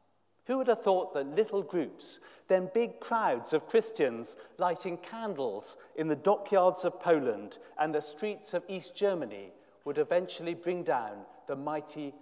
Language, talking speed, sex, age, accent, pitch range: English, 150 wpm, male, 40-59, British, 160-225 Hz